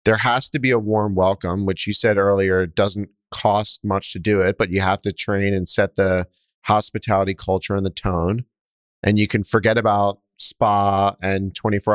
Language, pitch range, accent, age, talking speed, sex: English, 95-110 Hz, American, 30-49, 190 wpm, male